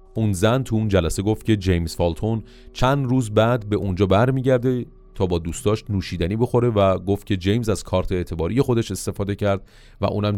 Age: 30-49